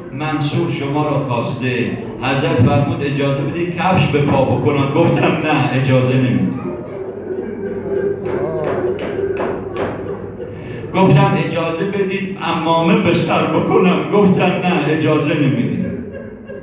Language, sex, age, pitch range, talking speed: Persian, male, 50-69, 140-195 Hz, 95 wpm